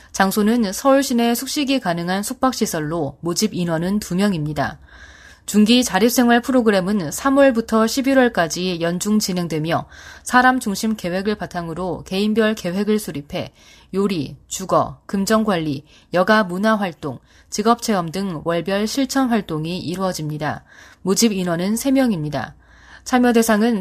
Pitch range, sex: 170-230 Hz, female